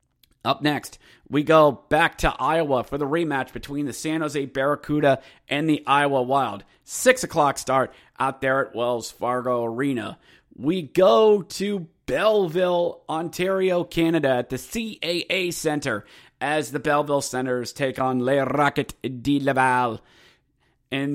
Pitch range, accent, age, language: 125-155 Hz, American, 30-49, English